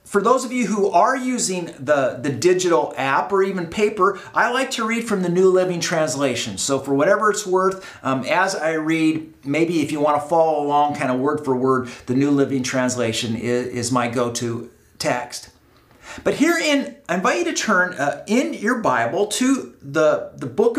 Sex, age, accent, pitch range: male, 40-59, American, 145-215 Hz